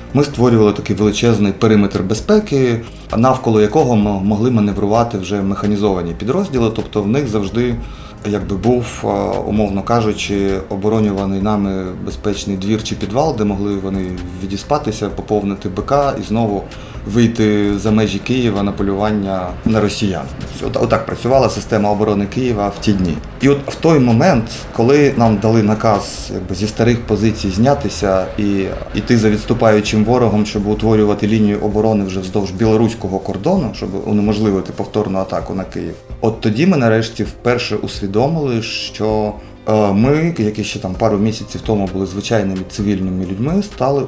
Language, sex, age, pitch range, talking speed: Ukrainian, male, 30-49, 100-125 Hz, 140 wpm